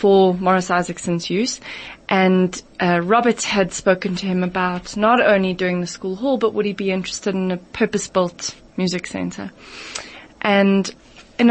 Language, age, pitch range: English, 20-39, 185-220 Hz